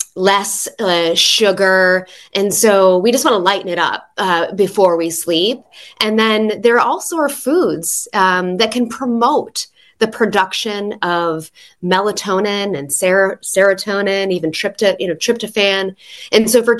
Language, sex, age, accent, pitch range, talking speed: English, female, 20-39, American, 175-215 Hz, 145 wpm